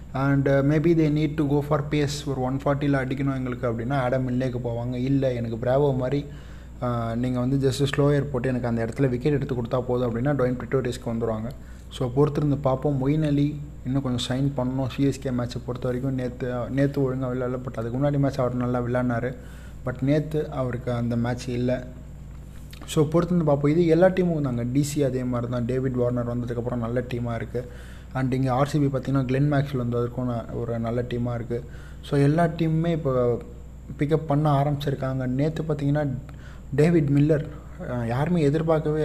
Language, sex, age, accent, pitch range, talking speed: Tamil, male, 20-39, native, 125-145 Hz, 165 wpm